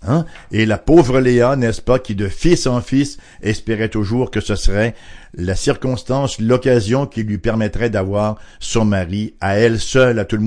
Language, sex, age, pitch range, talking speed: English, male, 60-79, 100-135 Hz, 185 wpm